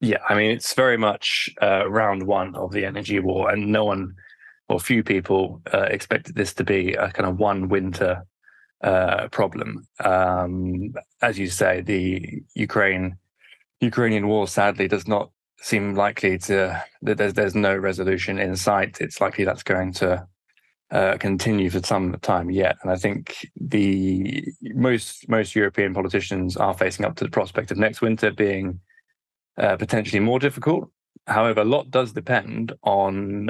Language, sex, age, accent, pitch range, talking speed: English, male, 20-39, British, 95-110 Hz, 160 wpm